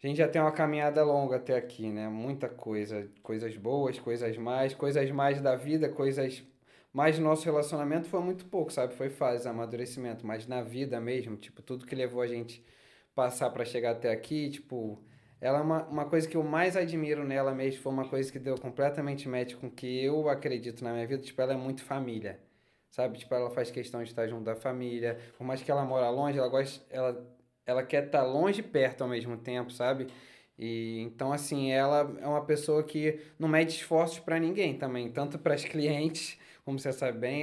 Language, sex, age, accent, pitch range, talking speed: Portuguese, male, 20-39, Brazilian, 125-155 Hz, 205 wpm